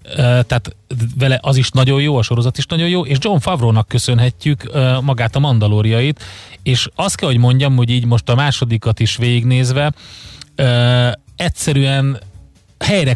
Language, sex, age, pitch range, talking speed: Hungarian, male, 30-49, 110-140 Hz, 160 wpm